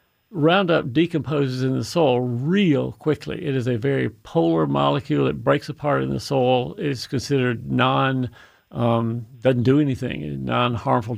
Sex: male